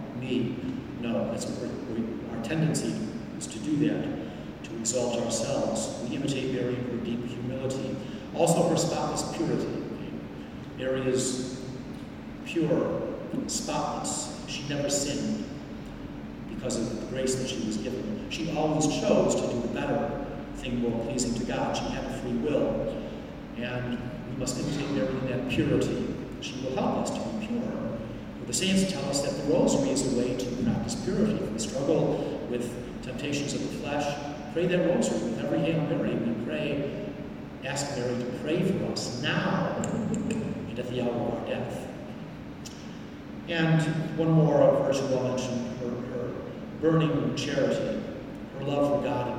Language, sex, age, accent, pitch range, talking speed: English, male, 40-59, American, 120-150 Hz, 165 wpm